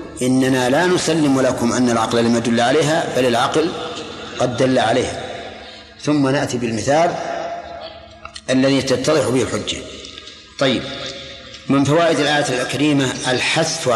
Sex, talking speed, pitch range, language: male, 115 wpm, 125-150 Hz, Arabic